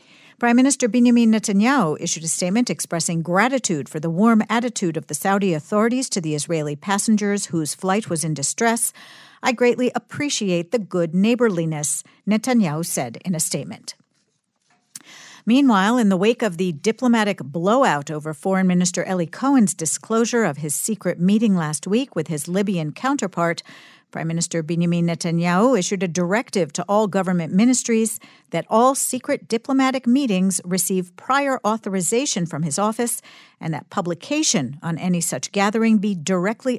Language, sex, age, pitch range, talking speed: English, female, 50-69, 170-235 Hz, 150 wpm